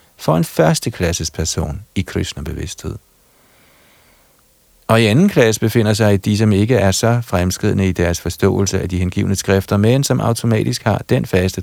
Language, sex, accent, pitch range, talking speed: Danish, male, native, 95-115 Hz, 160 wpm